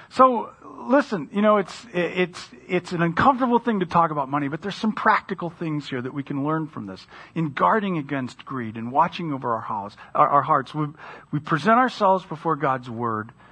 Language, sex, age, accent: English, male, 40-59, American